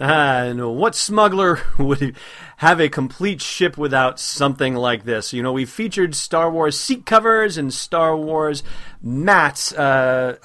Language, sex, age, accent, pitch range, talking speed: English, male, 30-49, American, 120-160 Hz, 150 wpm